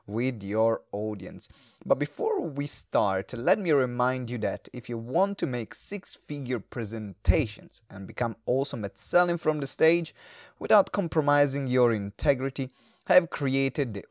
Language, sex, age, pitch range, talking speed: English, male, 30-49, 115-145 Hz, 150 wpm